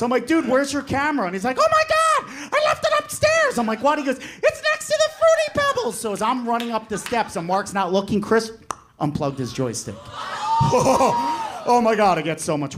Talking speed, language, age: 240 wpm, English, 40-59